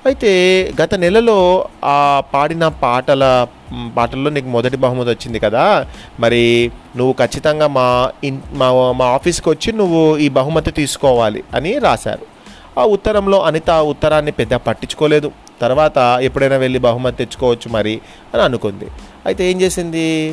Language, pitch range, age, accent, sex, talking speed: Telugu, 120-160 Hz, 30-49, native, male, 130 wpm